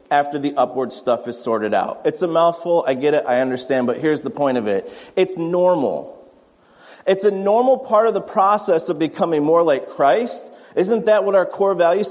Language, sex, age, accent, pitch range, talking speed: English, male, 30-49, American, 195-245 Hz, 205 wpm